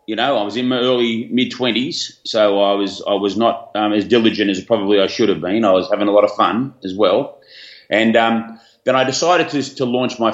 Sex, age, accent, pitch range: male, 30-49, Australian, 95-110 Hz